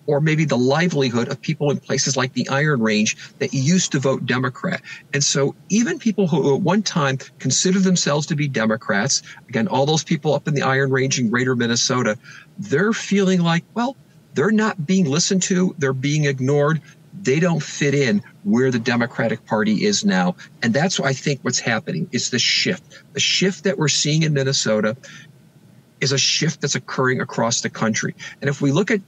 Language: English